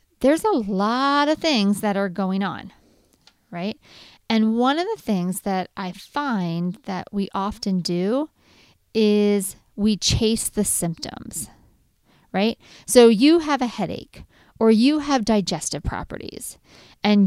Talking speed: 135 wpm